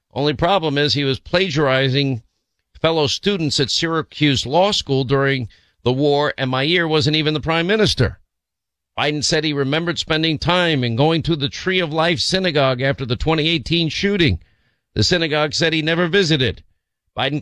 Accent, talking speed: American, 165 wpm